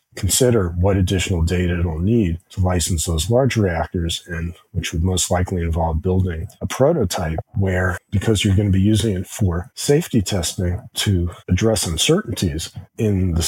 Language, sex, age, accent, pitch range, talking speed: English, male, 40-59, American, 90-105 Hz, 160 wpm